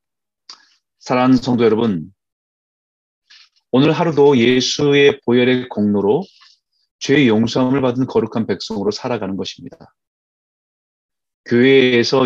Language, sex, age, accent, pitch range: Korean, male, 30-49, native, 105-145 Hz